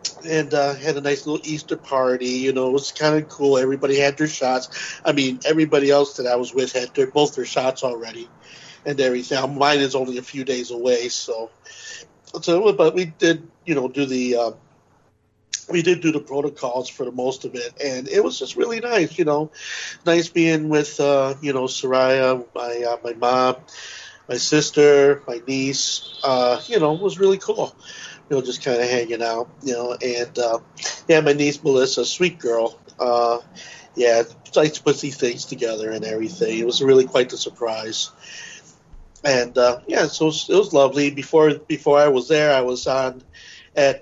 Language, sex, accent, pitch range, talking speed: English, male, American, 125-150 Hz, 190 wpm